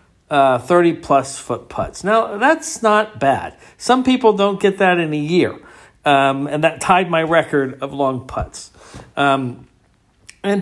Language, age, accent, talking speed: English, 50-69, American, 155 wpm